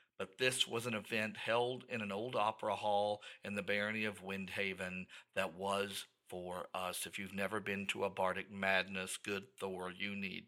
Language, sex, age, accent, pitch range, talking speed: English, male, 50-69, American, 100-125 Hz, 185 wpm